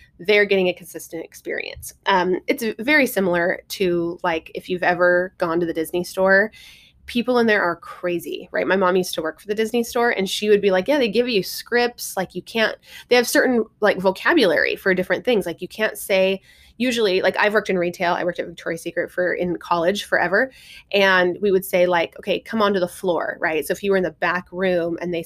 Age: 20-39